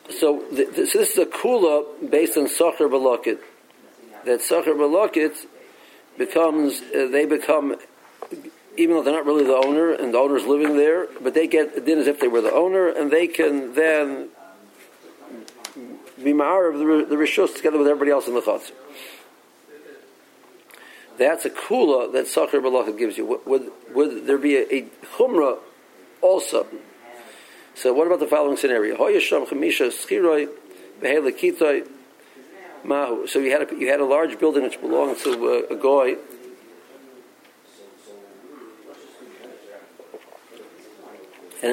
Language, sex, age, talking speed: English, male, 50-69, 135 wpm